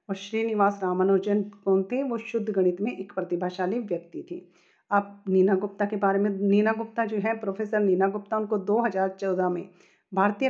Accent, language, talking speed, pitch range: native, Hindi, 165 wpm, 185-220 Hz